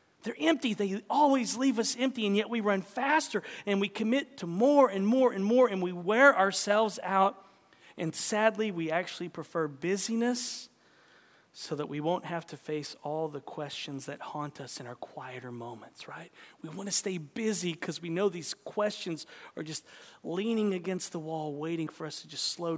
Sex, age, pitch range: male, 40-59, 145-200 Hz